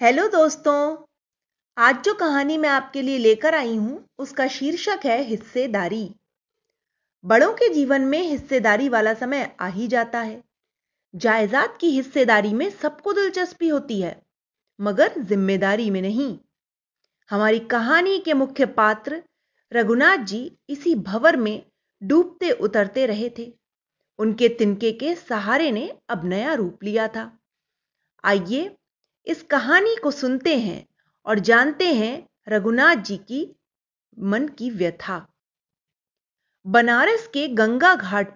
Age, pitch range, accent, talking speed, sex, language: 30-49, 215-295 Hz, native, 125 wpm, female, Hindi